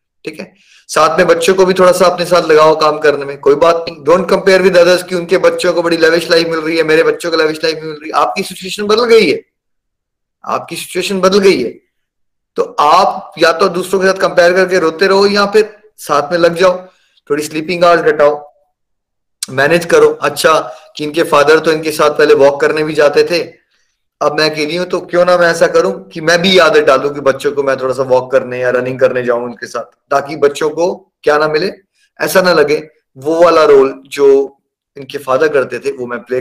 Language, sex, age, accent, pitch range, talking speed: Hindi, male, 20-39, native, 155-200 Hz, 215 wpm